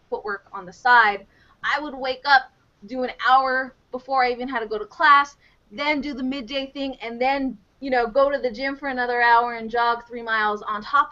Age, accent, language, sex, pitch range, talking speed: 20-39, American, English, female, 215-275 Hz, 220 wpm